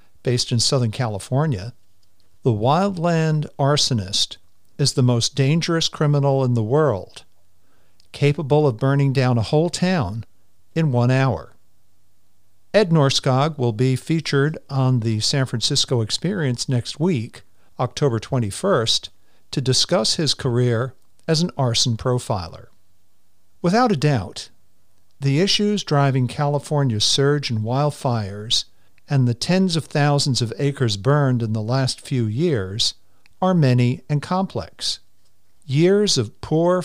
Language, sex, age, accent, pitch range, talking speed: English, male, 50-69, American, 110-145 Hz, 125 wpm